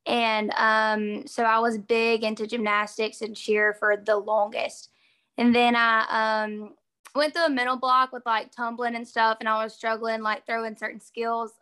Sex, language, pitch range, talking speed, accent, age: female, English, 220-245 Hz, 180 wpm, American, 10-29